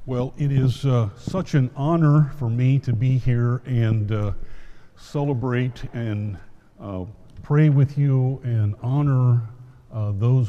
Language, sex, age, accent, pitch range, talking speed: English, male, 50-69, American, 110-135 Hz, 135 wpm